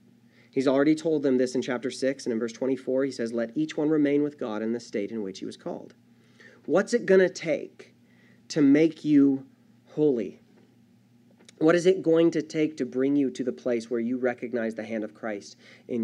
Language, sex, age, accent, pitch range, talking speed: English, male, 30-49, American, 125-175 Hz, 215 wpm